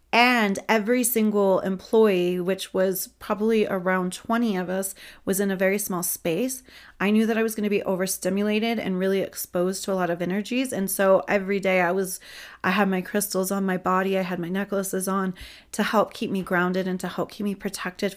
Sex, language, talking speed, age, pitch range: female, English, 210 wpm, 30-49, 190-225 Hz